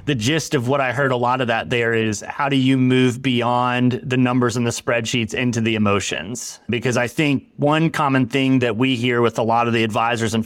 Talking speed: 235 wpm